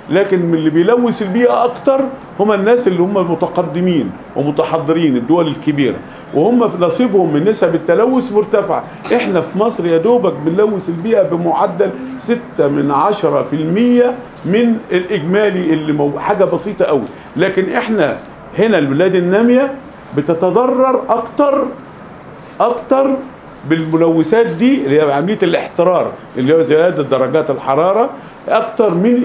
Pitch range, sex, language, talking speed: 155-225 Hz, male, Arabic, 125 wpm